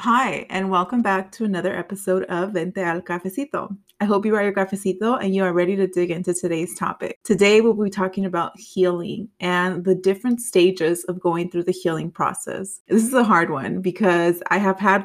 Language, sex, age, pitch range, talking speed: English, female, 20-39, 175-195 Hz, 205 wpm